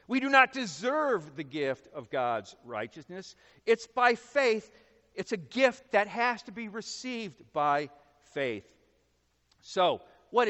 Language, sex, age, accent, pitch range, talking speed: English, male, 50-69, American, 145-205 Hz, 135 wpm